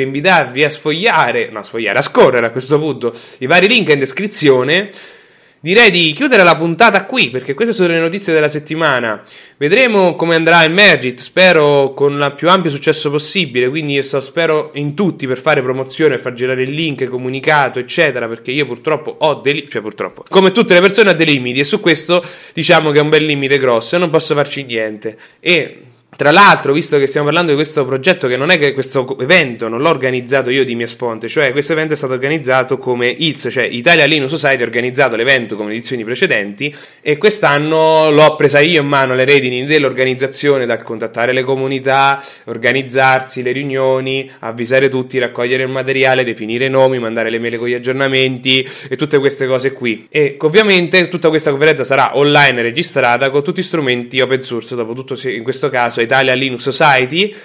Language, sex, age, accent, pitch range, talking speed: English, male, 20-39, Italian, 130-160 Hz, 190 wpm